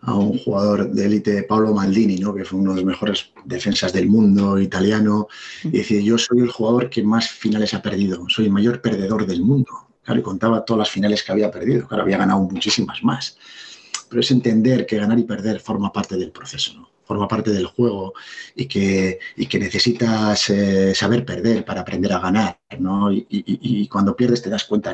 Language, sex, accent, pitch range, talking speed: Spanish, male, Spanish, 100-115 Hz, 210 wpm